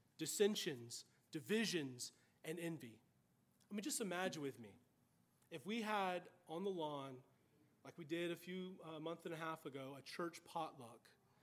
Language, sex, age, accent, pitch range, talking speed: English, male, 30-49, American, 155-195 Hz, 160 wpm